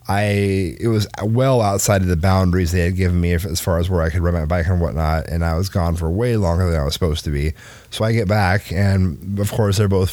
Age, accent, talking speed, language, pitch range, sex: 30-49, American, 265 wpm, English, 95-115 Hz, male